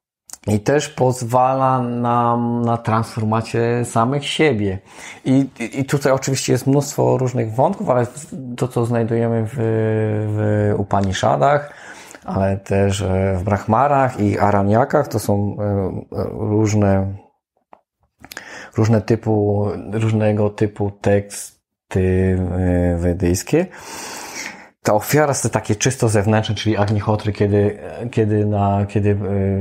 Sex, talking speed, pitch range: male, 100 wpm, 100-120 Hz